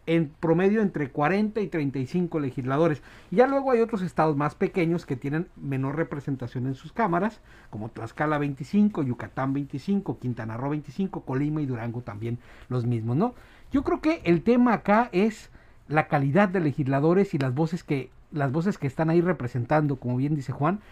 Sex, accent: male, Mexican